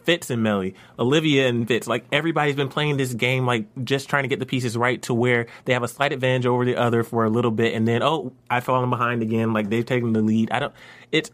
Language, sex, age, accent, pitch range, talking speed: English, male, 20-39, American, 110-135 Hz, 260 wpm